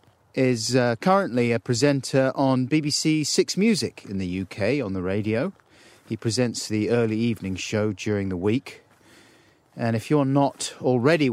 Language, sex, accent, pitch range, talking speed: English, male, British, 110-135 Hz, 155 wpm